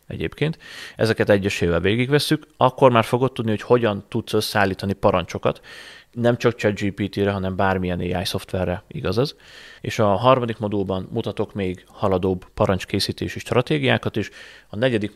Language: Hungarian